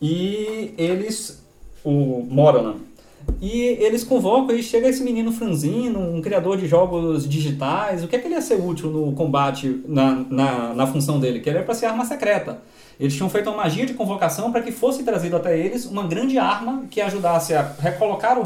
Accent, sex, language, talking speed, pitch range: Brazilian, male, Portuguese, 190 wpm, 150-225 Hz